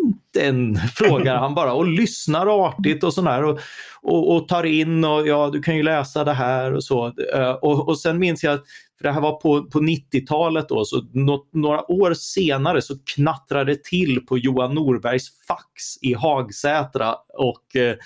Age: 30-49